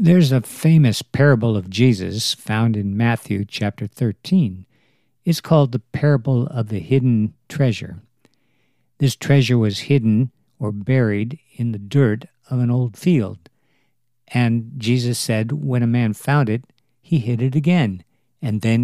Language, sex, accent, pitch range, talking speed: English, male, American, 110-140 Hz, 145 wpm